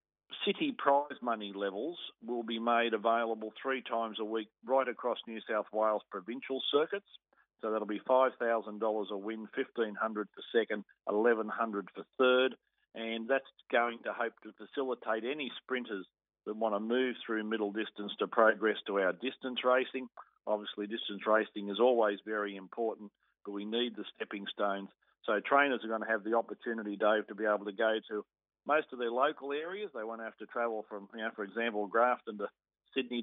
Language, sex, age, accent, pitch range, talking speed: English, male, 50-69, Australian, 105-120 Hz, 180 wpm